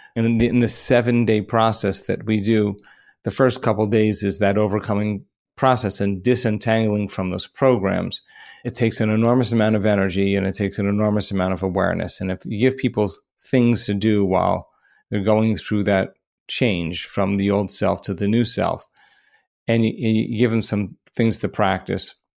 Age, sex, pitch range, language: 40-59, male, 105-120 Hz, English